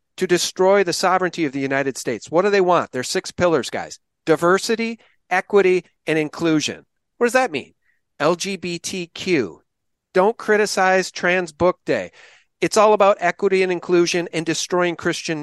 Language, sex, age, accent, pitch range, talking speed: English, male, 50-69, American, 150-190 Hz, 155 wpm